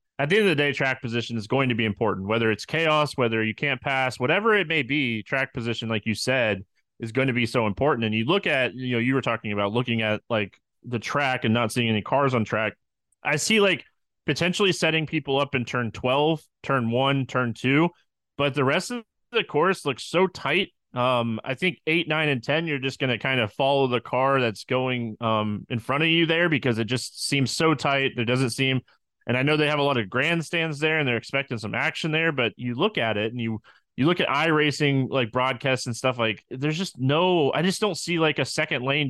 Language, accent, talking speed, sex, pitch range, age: English, American, 240 wpm, male, 115-150 Hz, 20-39